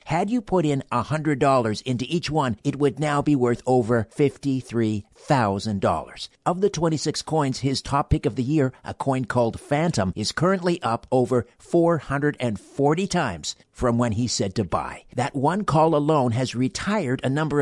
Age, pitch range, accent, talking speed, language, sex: 50-69, 115-145 Hz, American, 165 wpm, English, male